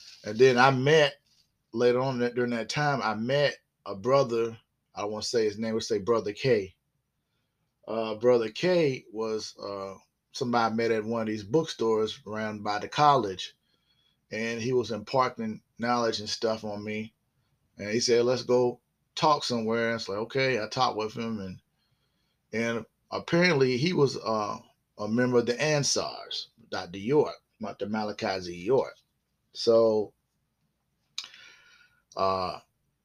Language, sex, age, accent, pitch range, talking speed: English, male, 30-49, American, 110-130 Hz, 155 wpm